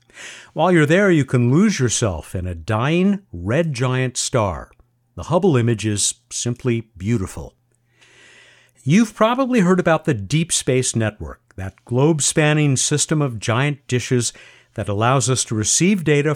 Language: English